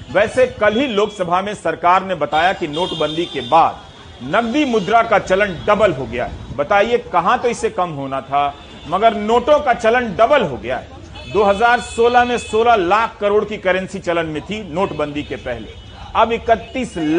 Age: 40-59